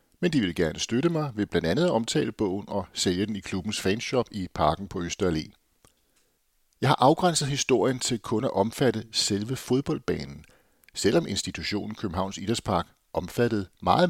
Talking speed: 150 wpm